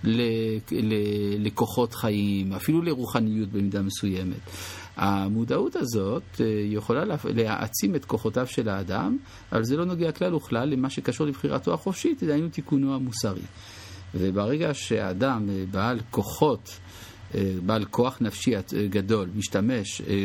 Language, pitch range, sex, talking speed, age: English, 100-130 Hz, male, 105 wpm, 50-69